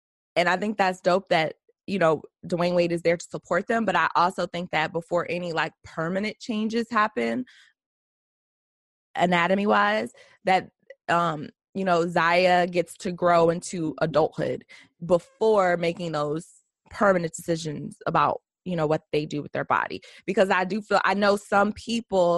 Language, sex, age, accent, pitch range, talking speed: English, female, 20-39, American, 170-205 Hz, 160 wpm